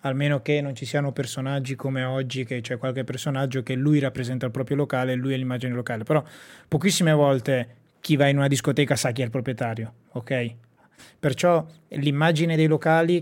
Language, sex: Italian, male